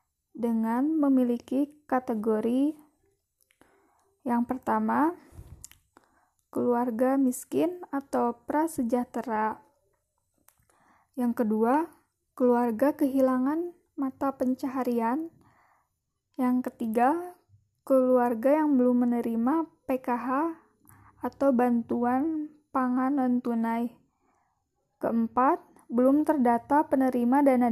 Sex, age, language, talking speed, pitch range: female, 20-39, Indonesian, 70 wpm, 245-295 Hz